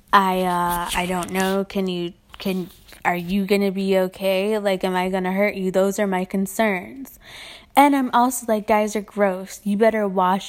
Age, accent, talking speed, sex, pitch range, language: 20-39, American, 190 wpm, female, 185-210 Hz, English